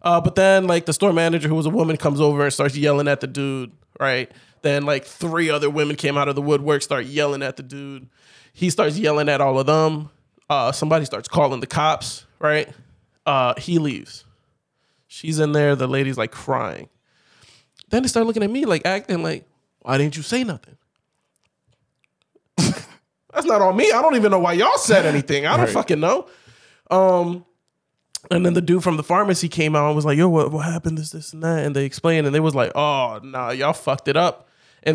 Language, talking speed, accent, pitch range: English, 215 wpm, American, 140-175 Hz